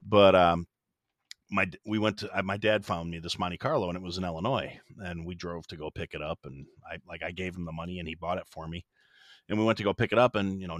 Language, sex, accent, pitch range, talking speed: English, male, American, 85-110 Hz, 285 wpm